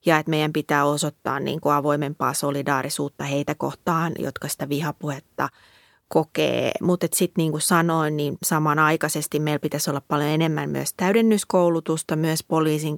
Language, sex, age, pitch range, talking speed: Finnish, female, 30-49, 150-170 Hz, 135 wpm